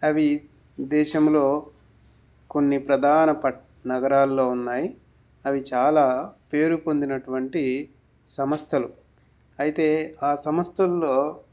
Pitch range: 130-155 Hz